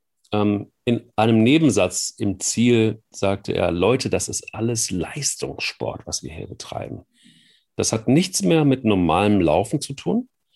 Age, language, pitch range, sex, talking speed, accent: 40-59, German, 95-110 Hz, male, 140 wpm, German